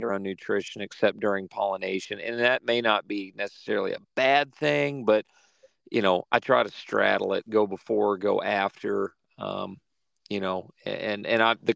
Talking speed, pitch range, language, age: 165 wpm, 100-115 Hz, English, 40-59